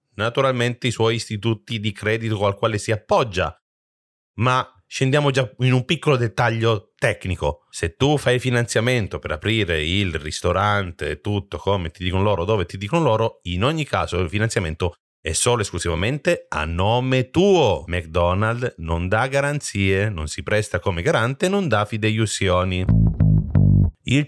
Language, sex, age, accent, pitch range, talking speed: Italian, male, 30-49, native, 90-140 Hz, 145 wpm